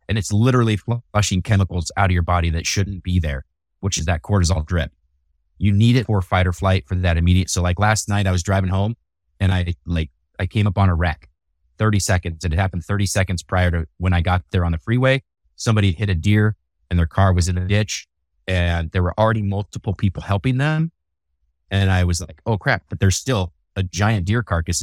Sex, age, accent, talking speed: male, 30-49, American, 225 wpm